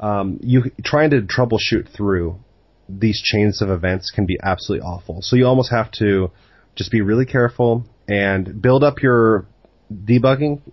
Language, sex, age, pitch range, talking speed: English, male, 30-49, 95-115 Hz, 155 wpm